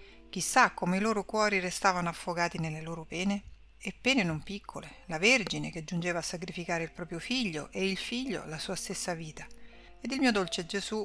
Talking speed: 190 wpm